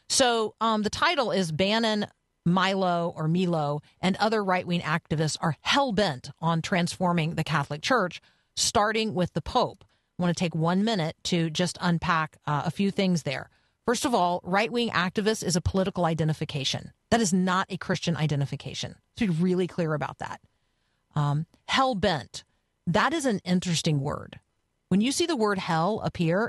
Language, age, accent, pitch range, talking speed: English, 40-59, American, 160-205 Hz, 165 wpm